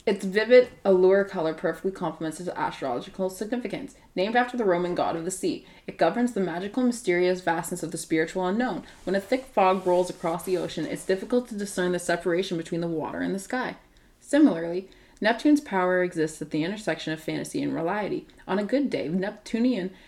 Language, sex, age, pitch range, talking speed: English, female, 20-39, 170-220 Hz, 190 wpm